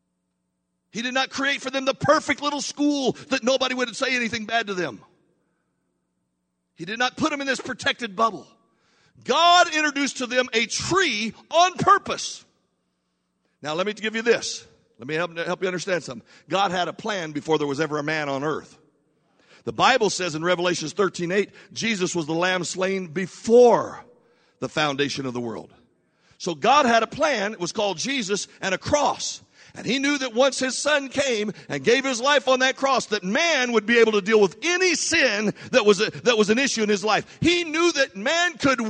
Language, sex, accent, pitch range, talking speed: English, male, American, 175-265 Hz, 200 wpm